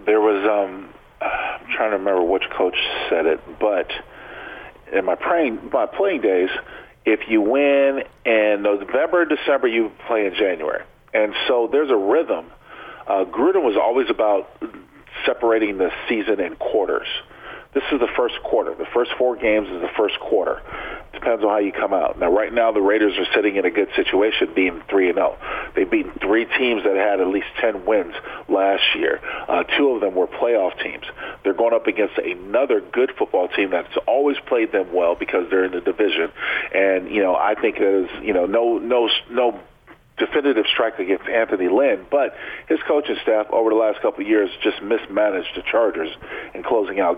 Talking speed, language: 185 wpm, English